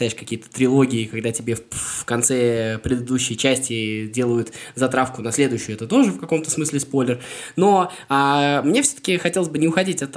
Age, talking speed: 20-39, 160 wpm